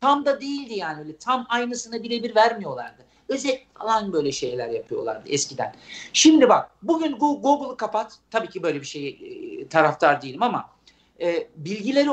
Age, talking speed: 50-69, 150 wpm